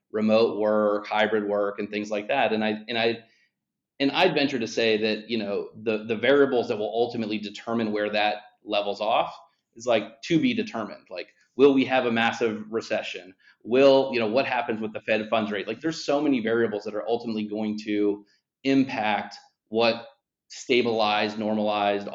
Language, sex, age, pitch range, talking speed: English, male, 30-49, 105-130 Hz, 180 wpm